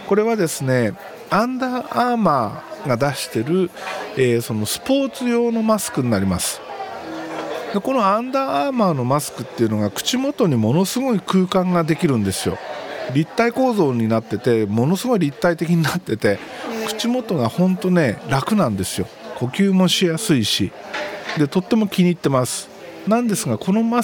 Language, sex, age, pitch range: Japanese, male, 50-69, 135-215 Hz